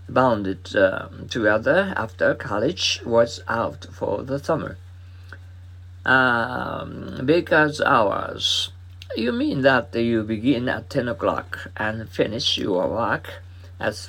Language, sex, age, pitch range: Japanese, male, 50-69, 90-125 Hz